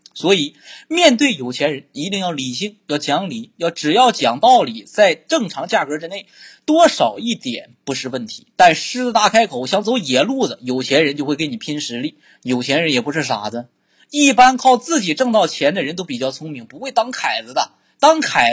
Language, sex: Chinese, male